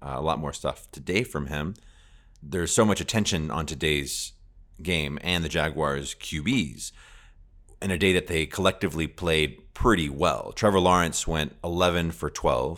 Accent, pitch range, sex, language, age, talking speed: American, 75-90 Hz, male, English, 30-49, 160 wpm